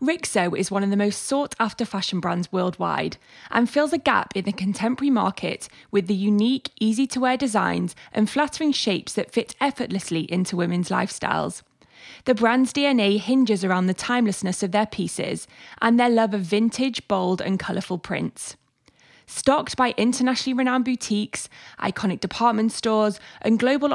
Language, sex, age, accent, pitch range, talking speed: English, female, 20-39, British, 195-255 Hz, 155 wpm